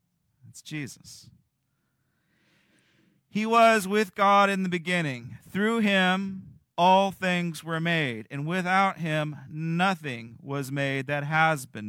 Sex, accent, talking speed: male, American, 120 wpm